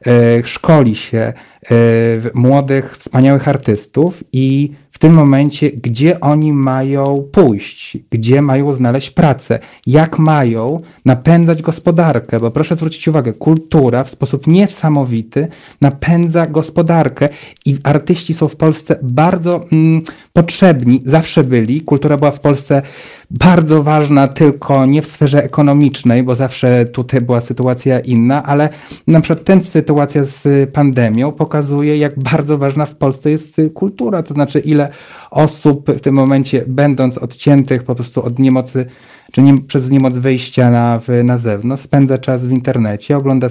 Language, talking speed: Polish, 135 wpm